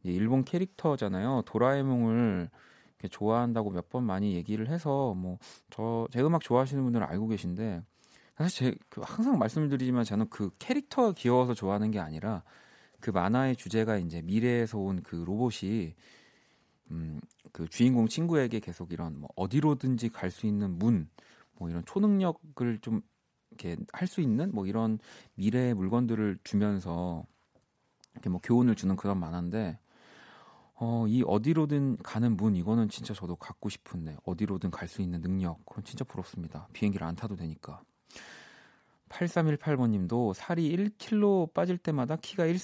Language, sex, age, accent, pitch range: Korean, male, 30-49, native, 95-140 Hz